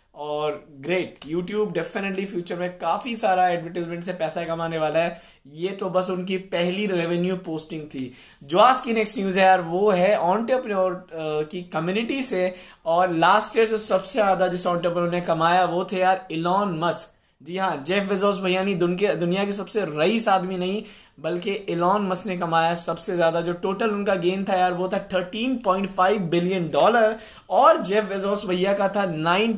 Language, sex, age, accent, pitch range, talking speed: Hindi, male, 20-39, native, 170-200 Hz, 175 wpm